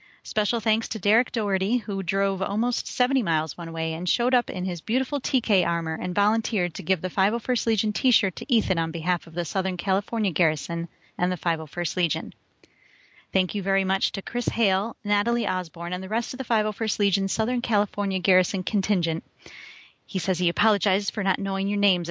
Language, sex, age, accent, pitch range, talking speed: English, female, 30-49, American, 180-220 Hz, 190 wpm